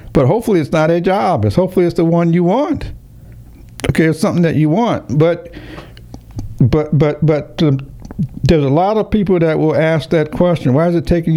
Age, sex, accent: 60-79, male, American